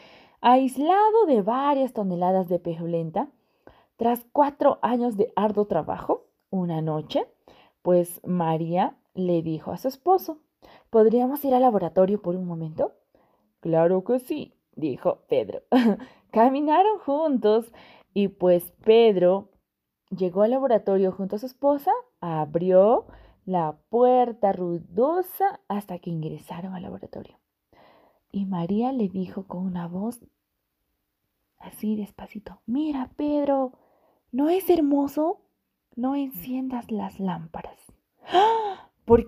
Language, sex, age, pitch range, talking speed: Spanish, female, 20-39, 185-275 Hz, 110 wpm